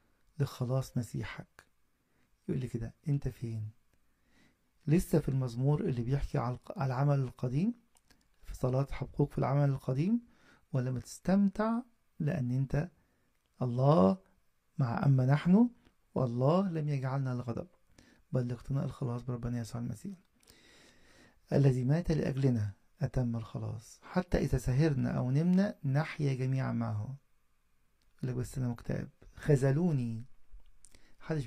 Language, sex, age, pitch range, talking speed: English, male, 50-69, 120-150 Hz, 110 wpm